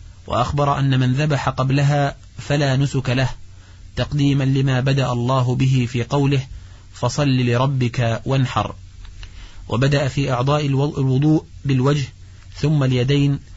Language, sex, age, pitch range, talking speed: Arabic, male, 30-49, 105-135 Hz, 110 wpm